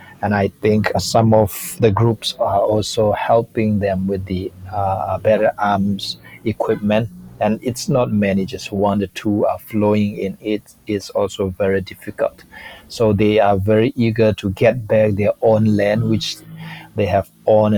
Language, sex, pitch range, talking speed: English, male, 95-110 Hz, 160 wpm